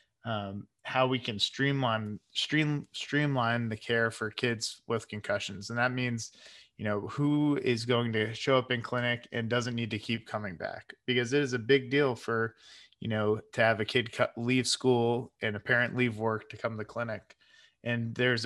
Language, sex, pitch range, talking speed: English, male, 110-125 Hz, 195 wpm